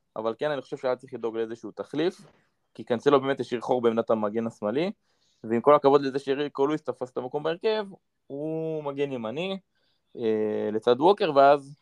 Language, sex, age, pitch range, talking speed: Hebrew, male, 20-39, 115-145 Hz, 180 wpm